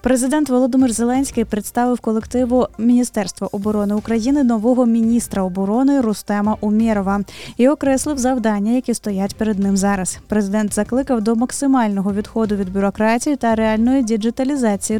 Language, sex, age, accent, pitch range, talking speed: Ukrainian, female, 20-39, native, 215-255 Hz, 125 wpm